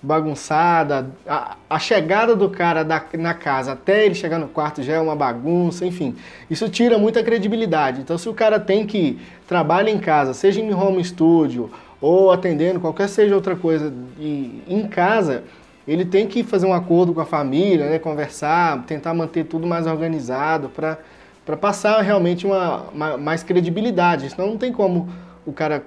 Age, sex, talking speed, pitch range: 20-39, male, 170 wpm, 160-210 Hz